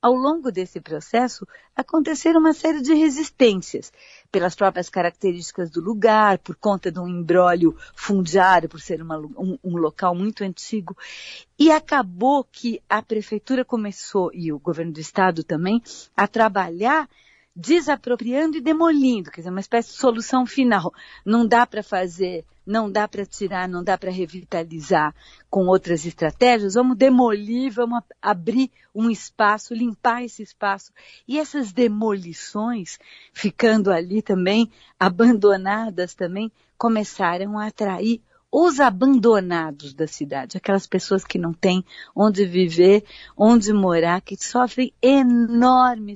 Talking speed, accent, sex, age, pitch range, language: 135 wpm, Brazilian, female, 50-69, 185-240 Hz, Portuguese